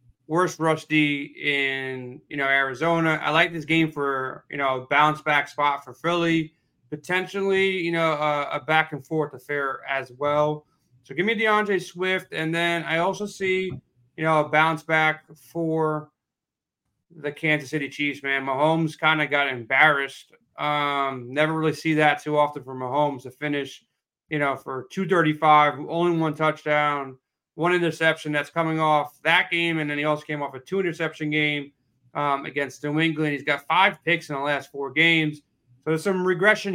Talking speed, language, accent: 175 wpm, English, American